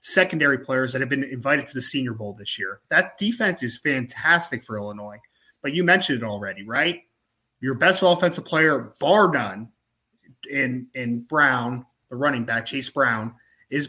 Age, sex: 20-39, male